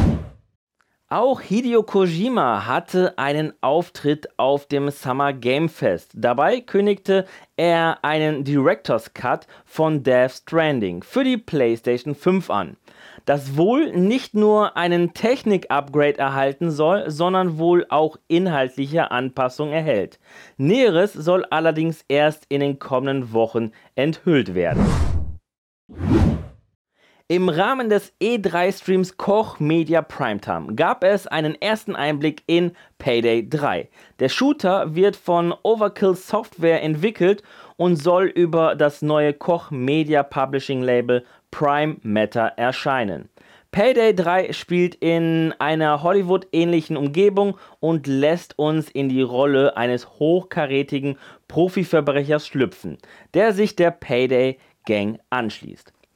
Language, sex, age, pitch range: German, male, 30-49, 140-185 Hz